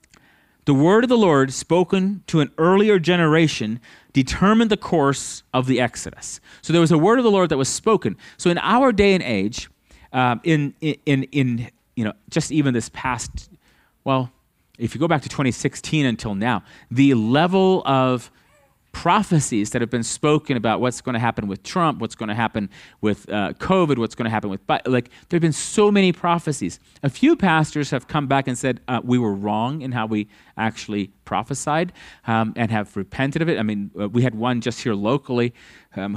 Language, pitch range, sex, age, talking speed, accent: English, 115-160 Hz, male, 30-49, 200 wpm, American